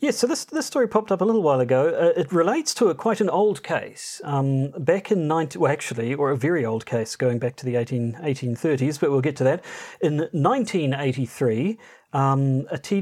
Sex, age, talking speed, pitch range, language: male, 40-59, 205 wpm, 125-155 Hz, English